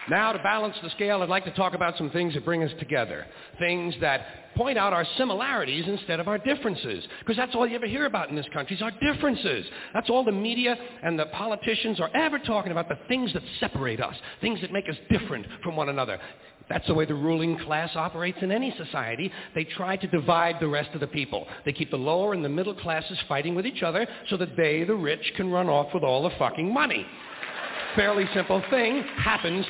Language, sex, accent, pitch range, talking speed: English, male, American, 160-215 Hz, 225 wpm